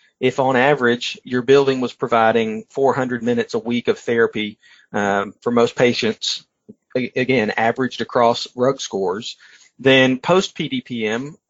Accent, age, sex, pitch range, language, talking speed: American, 40-59, male, 120-150 Hz, English, 130 wpm